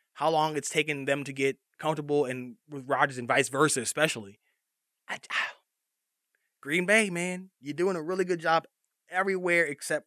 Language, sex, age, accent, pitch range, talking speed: English, male, 20-39, American, 130-160 Hz, 165 wpm